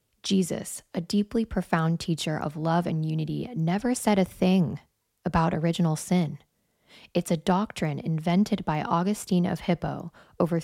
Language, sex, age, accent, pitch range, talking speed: English, female, 10-29, American, 160-185 Hz, 140 wpm